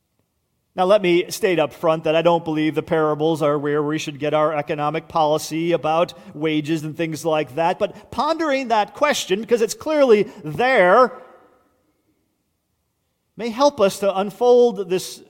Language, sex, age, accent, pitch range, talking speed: English, male, 40-59, American, 160-220 Hz, 155 wpm